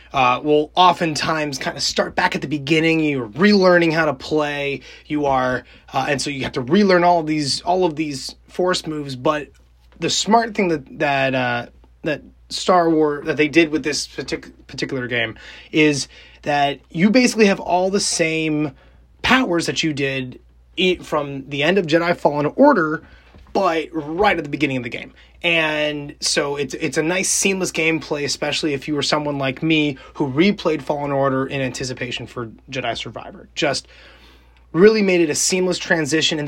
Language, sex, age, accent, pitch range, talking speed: English, male, 20-39, American, 135-165 Hz, 175 wpm